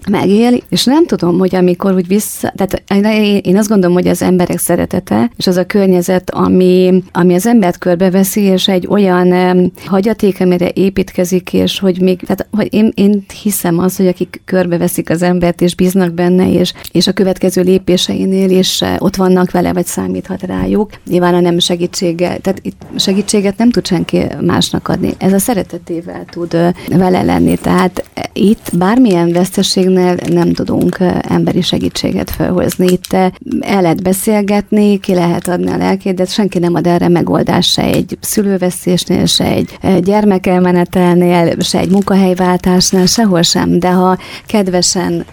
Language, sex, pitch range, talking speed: Hungarian, female, 175-190 Hz, 155 wpm